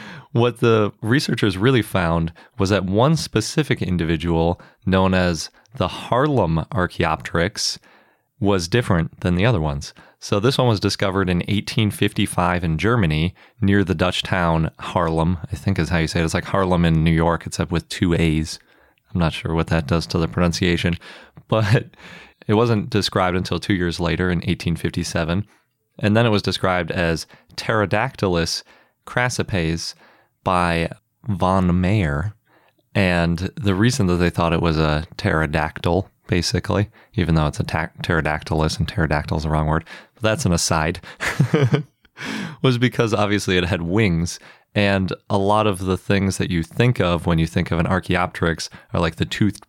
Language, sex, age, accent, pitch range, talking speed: English, male, 30-49, American, 85-105 Hz, 165 wpm